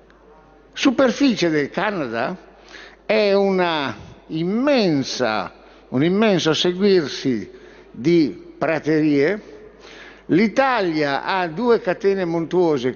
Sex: male